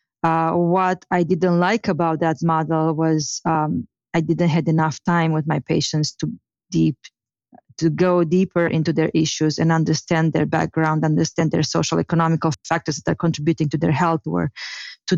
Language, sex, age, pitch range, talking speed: English, female, 30-49, 160-175 Hz, 170 wpm